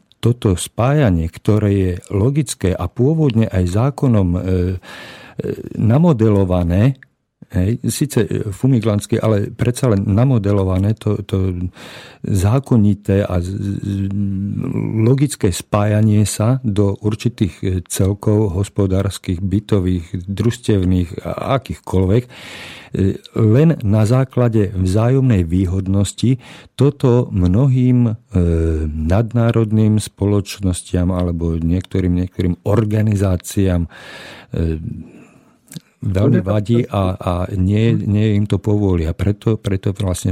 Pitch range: 90-115 Hz